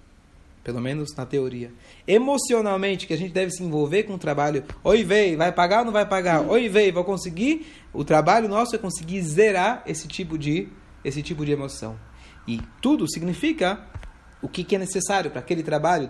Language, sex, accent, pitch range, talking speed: Portuguese, male, Brazilian, 150-210 Hz, 185 wpm